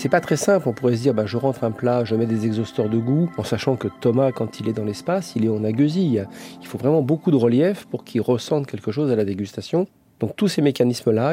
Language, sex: French, male